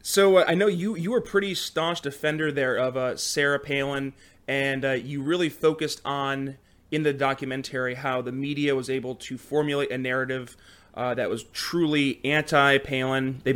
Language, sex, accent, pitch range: English, male, American, 130-150 Hz